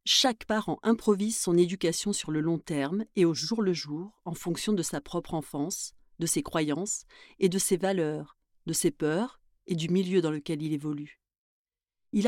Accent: French